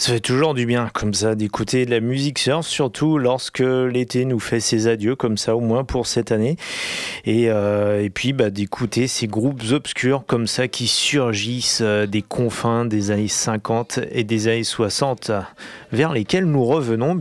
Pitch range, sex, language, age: 110-125 Hz, male, French, 30-49